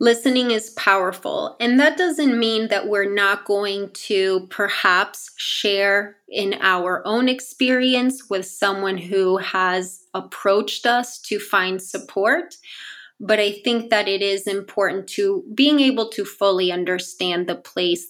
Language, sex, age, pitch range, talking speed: English, female, 20-39, 190-235 Hz, 140 wpm